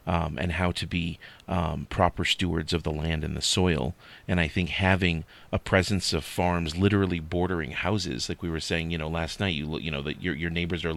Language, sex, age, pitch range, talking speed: English, male, 30-49, 80-95 Hz, 225 wpm